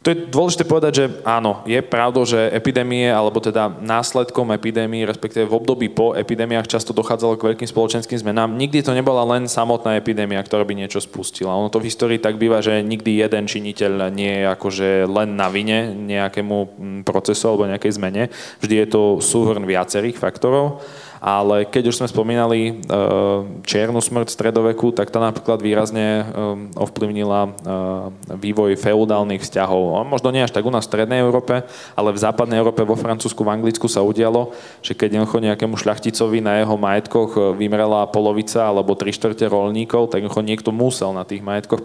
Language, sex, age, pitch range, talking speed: Slovak, male, 20-39, 105-120 Hz, 170 wpm